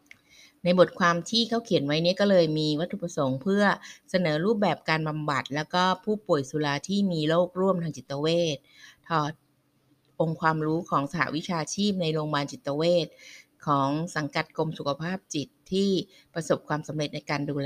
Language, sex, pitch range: Thai, female, 145-175 Hz